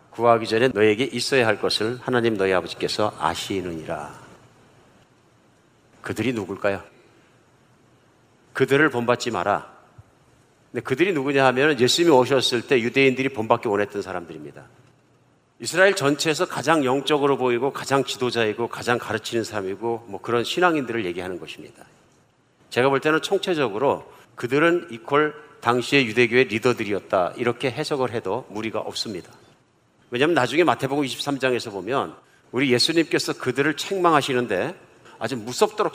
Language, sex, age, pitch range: Korean, male, 50-69, 115-150 Hz